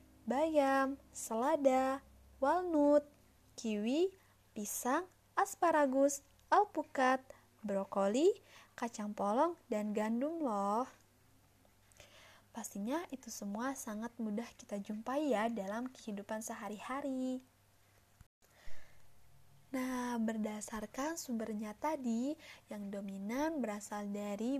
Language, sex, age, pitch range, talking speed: Malay, female, 20-39, 210-280 Hz, 80 wpm